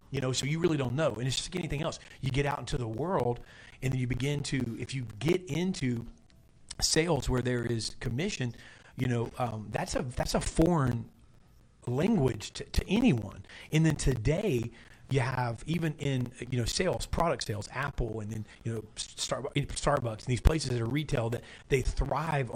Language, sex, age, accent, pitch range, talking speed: English, male, 40-59, American, 120-150 Hz, 185 wpm